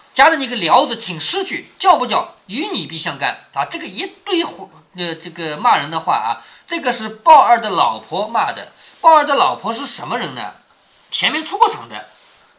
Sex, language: male, Chinese